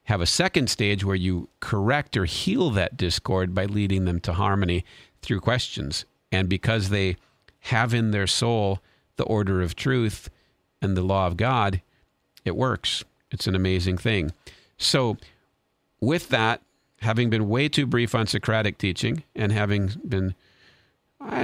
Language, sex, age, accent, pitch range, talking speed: English, male, 50-69, American, 95-120 Hz, 155 wpm